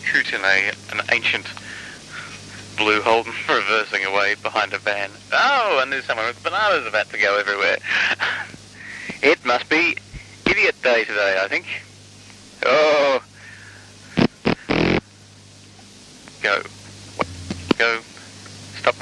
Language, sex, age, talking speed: English, male, 40-59, 105 wpm